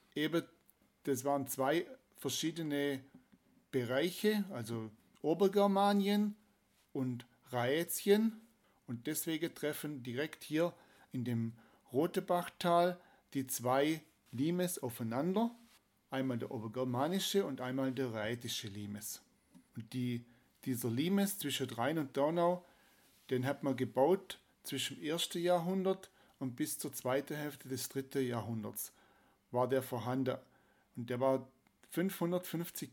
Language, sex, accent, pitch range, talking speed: German, male, German, 125-160 Hz, 110 wpm